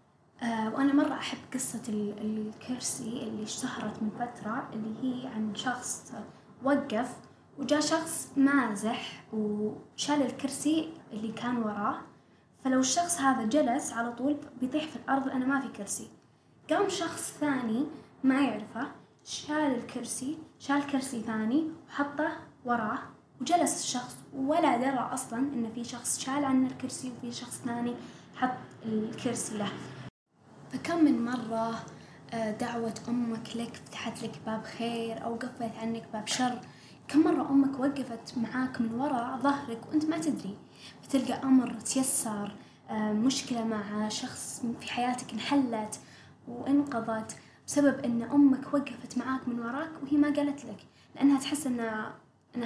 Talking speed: 130 wpm